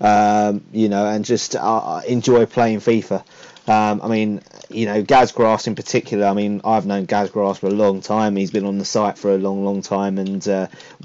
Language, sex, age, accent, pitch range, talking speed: English, male, 30-49, British, 100-110 Hz, 215 wpm